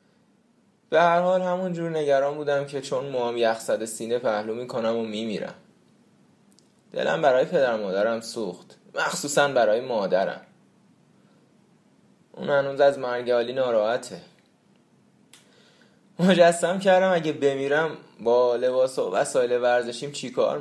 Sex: male